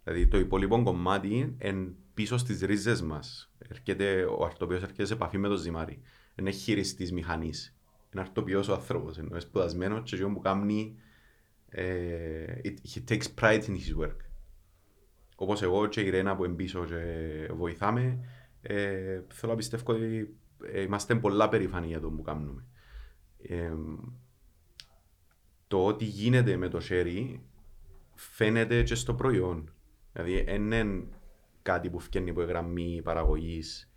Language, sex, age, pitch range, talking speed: Greek, male, 30-49, 85-110 Hz, 145 wpm